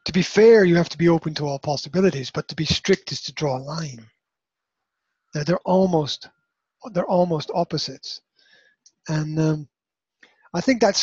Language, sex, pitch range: English, male, 150-195 Hz